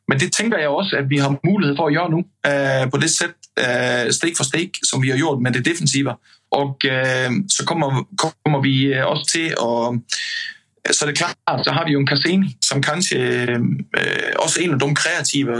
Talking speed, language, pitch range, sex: 225 wpm, Swedish, 135-170 Hz, male